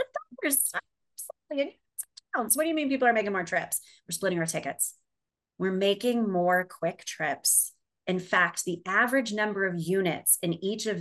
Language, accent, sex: English, American, female